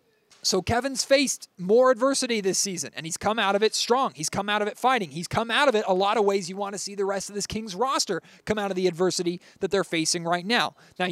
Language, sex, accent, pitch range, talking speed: English, male, American, 170-215 Hz, 270 wpm